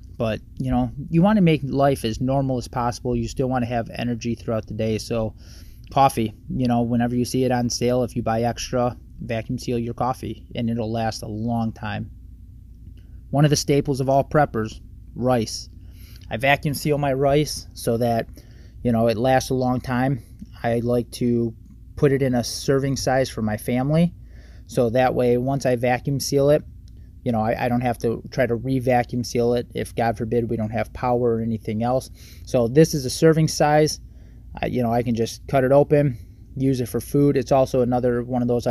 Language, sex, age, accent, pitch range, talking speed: English, male, 20-39, American, 110-130 Hz, 205 wpm